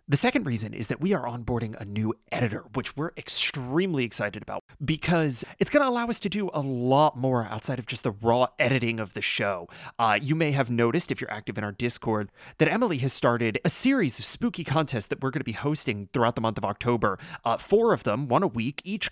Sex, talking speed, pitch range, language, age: male, 235 wpm, 110-155 Hz, English, 30-49